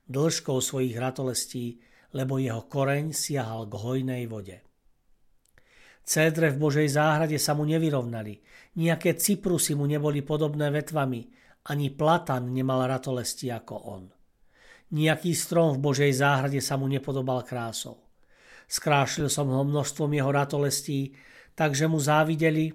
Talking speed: 125 wpm